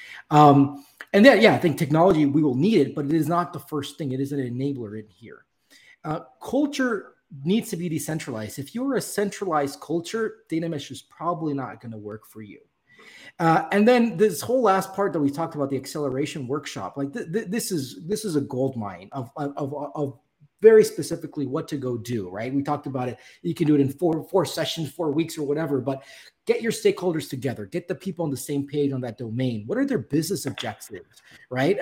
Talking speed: 215 wpm